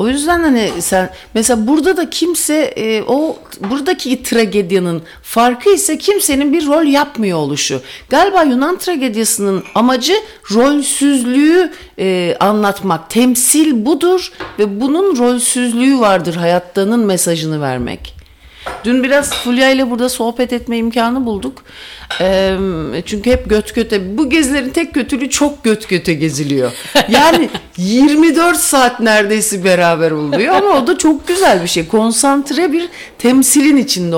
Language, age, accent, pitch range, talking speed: English, 60-79, Turkish, 185-280 Hz, 130 wpm